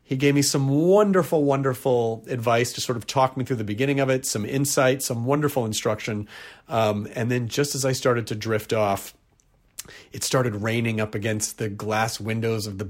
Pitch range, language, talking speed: 105-135 Hz, English, 195 wpm